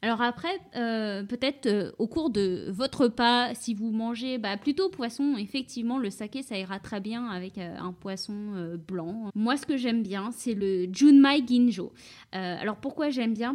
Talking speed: 190 wpm